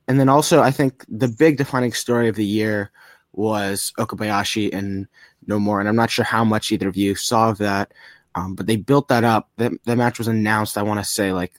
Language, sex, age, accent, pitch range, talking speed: English, male, 20-39, American, 100-115 Hz, 235 wpm